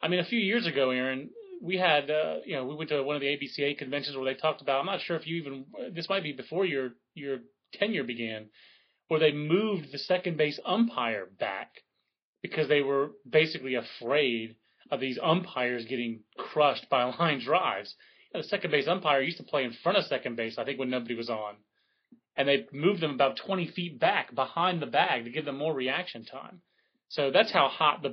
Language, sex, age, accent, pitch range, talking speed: English, male, 30-49, American, 135-180 Hz, 215 wpm